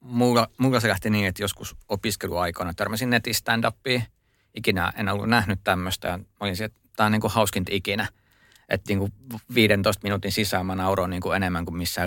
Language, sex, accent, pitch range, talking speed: Finnish, male, native, 90-105 Hz, 180 wpm